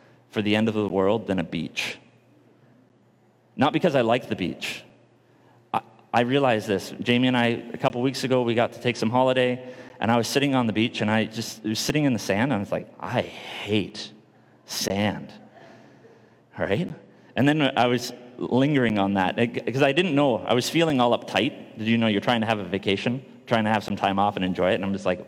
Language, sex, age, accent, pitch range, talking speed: English, male, 30-49, American, 115-160 Hz, 225 wpm